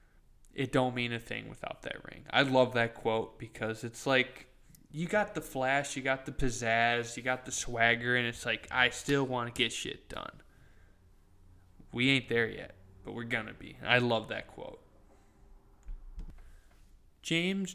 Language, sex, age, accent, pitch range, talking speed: English, male, 20-39, American, 115-135 Hz, 170 wpm